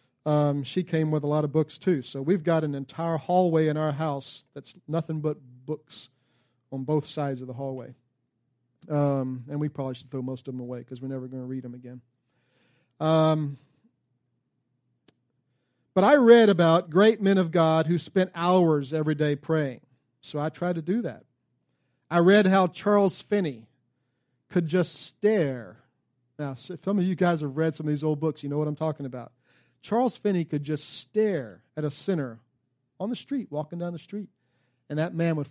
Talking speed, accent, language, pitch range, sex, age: 190 wpm, American, English, 130-175 Hz, male, 40-59